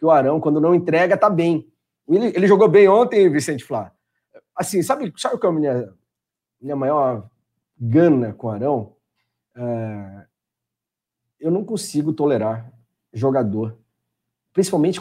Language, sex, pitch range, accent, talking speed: Portuguese, male, 135-210 Hz, Brazilian, 150 wpm